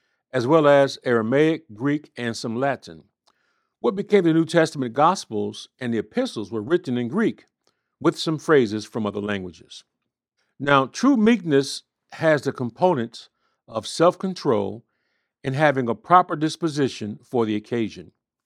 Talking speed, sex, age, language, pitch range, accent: 140 wpm, male, 50-69, English, 115-165 Hz, American